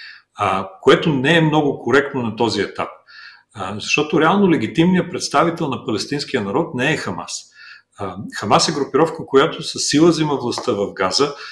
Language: Bulgarian